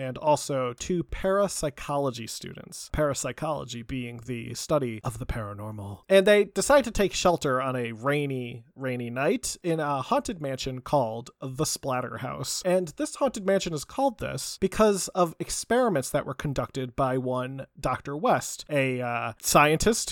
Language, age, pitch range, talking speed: English, 30-49, 130-195 Hz, 150 wpm